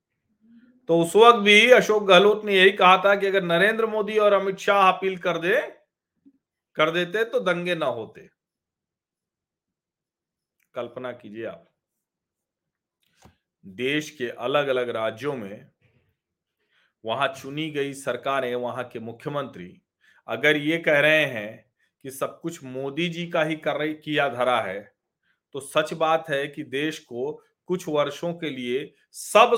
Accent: native